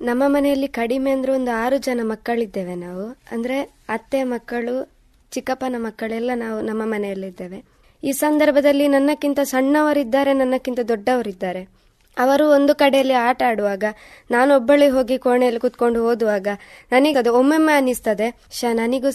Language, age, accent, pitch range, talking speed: Kannada, 20-39, native, 220-270 Hz, 125 wpm